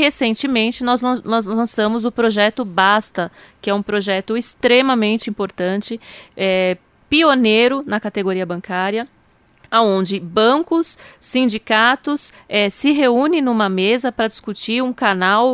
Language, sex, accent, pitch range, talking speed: Portuguese, female, Brazilian, 195-225 Hz, 110 wpm